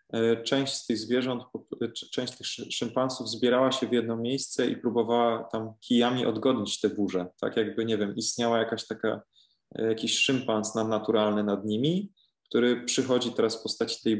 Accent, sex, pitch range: native, male, 105-120 Hz